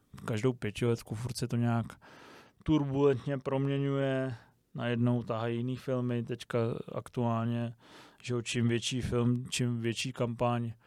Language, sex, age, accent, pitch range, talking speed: Czech, male, 20-39, native, 120-130 Hz, 120 wpm